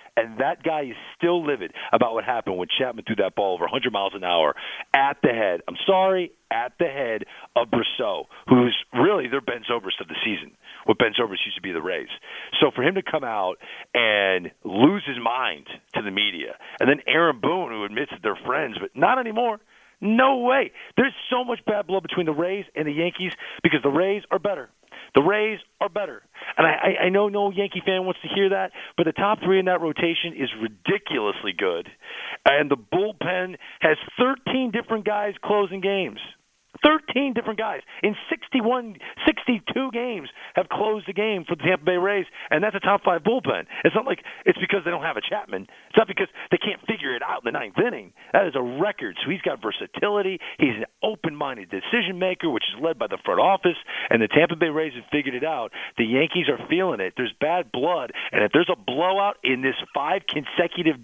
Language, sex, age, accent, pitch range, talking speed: English, male, 40-59, American, 165-215 Hz, 210 wpm